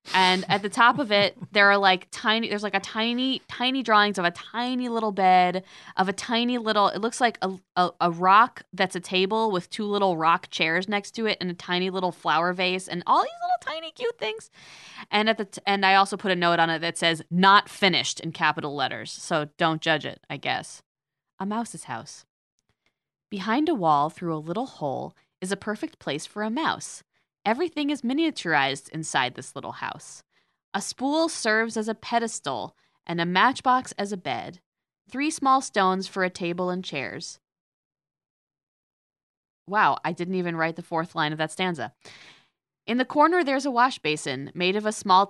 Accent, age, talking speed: American, 20-39, 195 wpm